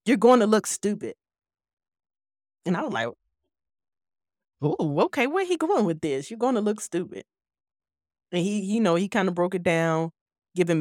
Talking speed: 180 wpm